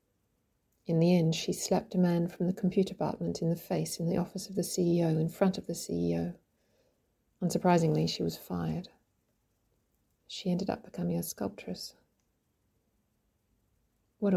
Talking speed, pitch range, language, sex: 150 wpm, 110-185 Hz, English, female